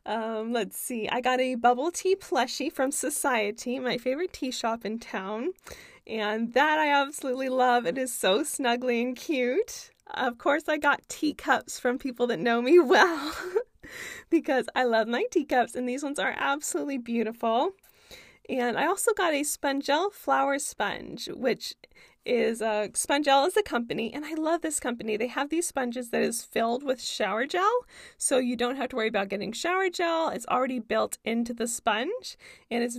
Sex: female